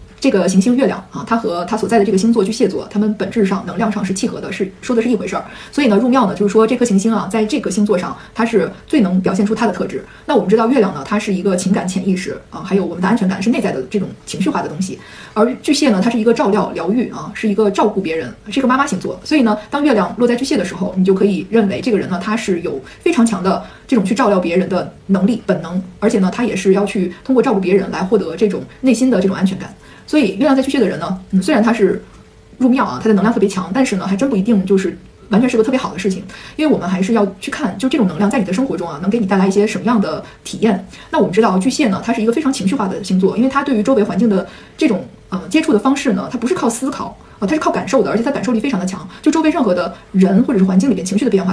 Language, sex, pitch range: Chinese, female, 195-240 Hz